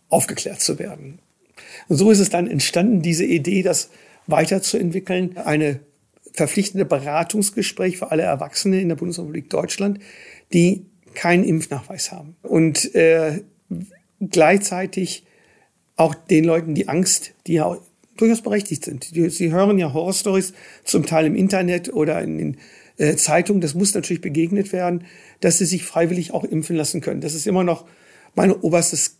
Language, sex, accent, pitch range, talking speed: German, male, German, 160-190 Hz, 150 wpm